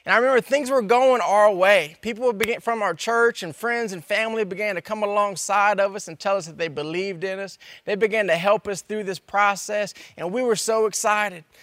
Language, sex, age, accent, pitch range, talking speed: English, male, 20-39, American, 180-230 Hz, 220 wpm